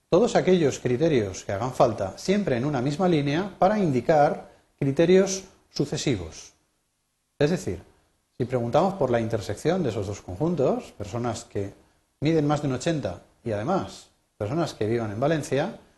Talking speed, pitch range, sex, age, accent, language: 150 wpm, 110-160 Hz, male, 40-59, Spanish, Spanish